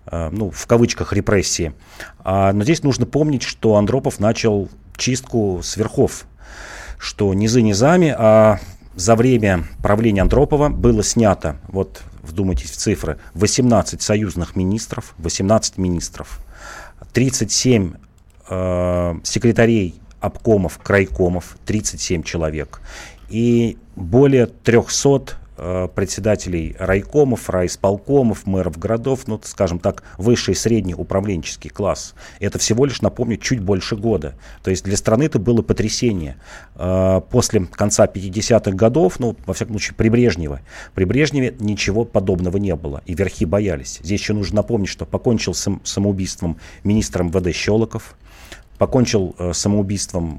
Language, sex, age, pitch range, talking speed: Russian, male, 40-59, 90-115 Hz, 115 wpm